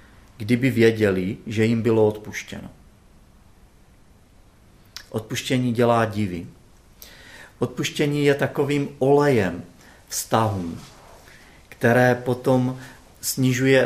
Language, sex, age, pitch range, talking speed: Czech, male, 40-59, 105-135 Hz, 75 wpm